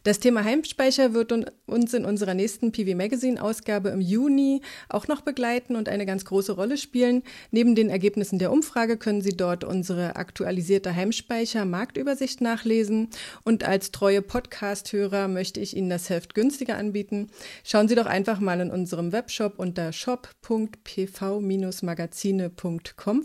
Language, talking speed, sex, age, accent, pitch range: German, 140 wpm, female, 30-49, German, 185-230 Hz